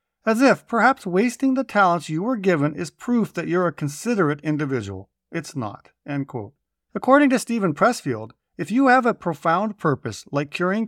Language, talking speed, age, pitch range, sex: English, 165 wpm, 50-69, 145-215 Hz, male